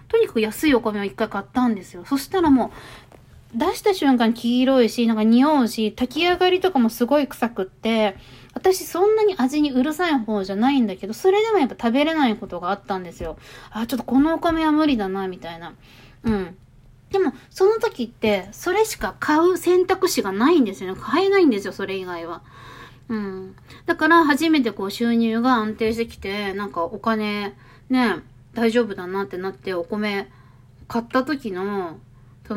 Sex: female